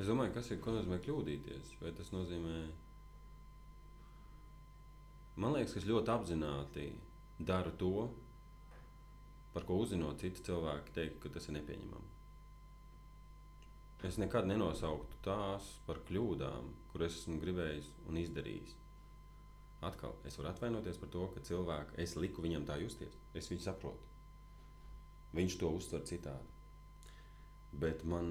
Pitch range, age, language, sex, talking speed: 75-95 Hz, 30-49, English, male, 125 wpm